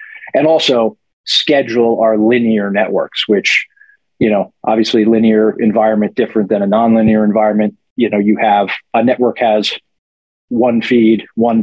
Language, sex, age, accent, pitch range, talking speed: English, male, 40-59, American, 105-125 Hz, 140 wpm